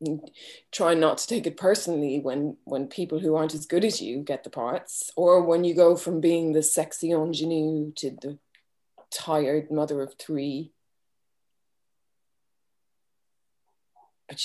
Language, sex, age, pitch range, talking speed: English, female, 20-39, 155-185 Hz, 140 wpm